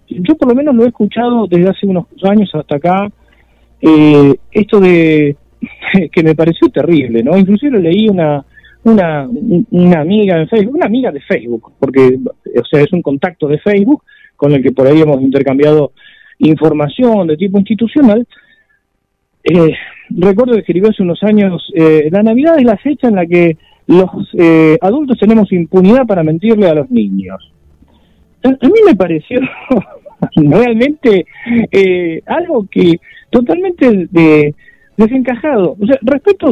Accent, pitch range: Argentinian, 155-235 Hz